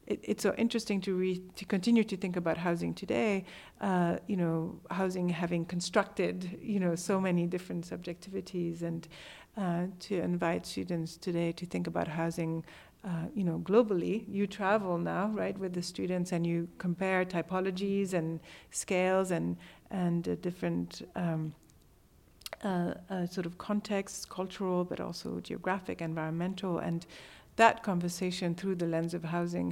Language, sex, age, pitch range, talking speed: English, female, 60-79, 170-190 Hz, 150 wpm